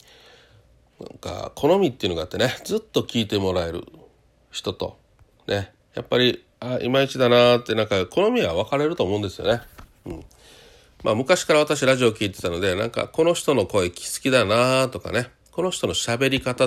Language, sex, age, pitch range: Japanese, male, 40-59, 95-135 Hz